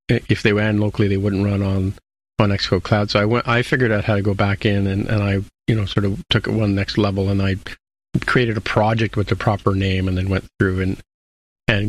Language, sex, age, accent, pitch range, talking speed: English, male, 40-59, American, 100-120 Hz, 245 wpm